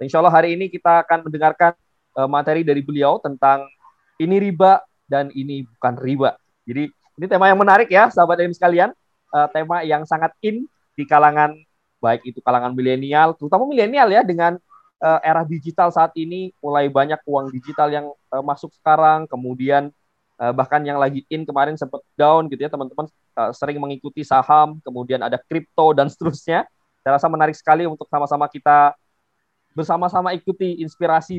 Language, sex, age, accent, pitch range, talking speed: Indonesian, male, 20-39, native, 135-165 Hz, 165 wpm